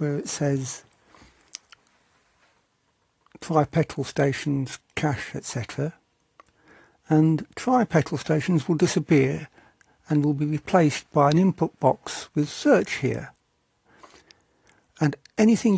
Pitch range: 140-170 Hz